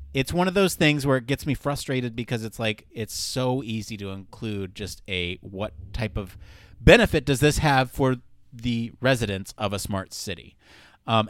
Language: English